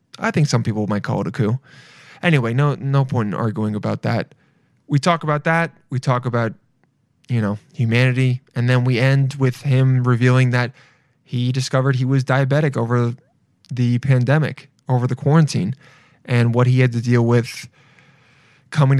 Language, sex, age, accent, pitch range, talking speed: English, male, 20-39, American, 125-150 Hz, 170 wpm